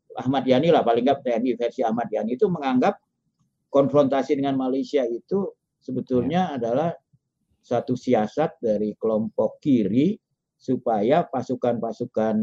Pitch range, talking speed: 105-135 Hz, 115 wpm